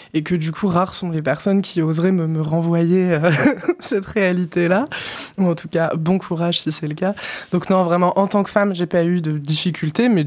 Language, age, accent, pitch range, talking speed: French, 20-39, French, 160-185 Hz, 235 wpm